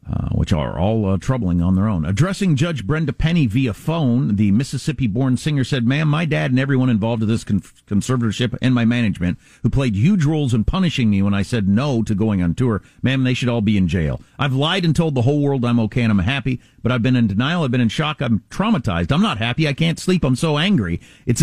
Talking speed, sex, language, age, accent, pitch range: 240 wpm, male, English, 50-69, American, 115-155 Hz